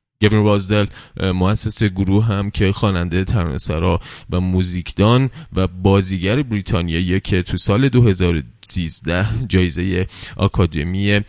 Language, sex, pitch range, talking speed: Persian, male, 85-105 Hz, 100 wpm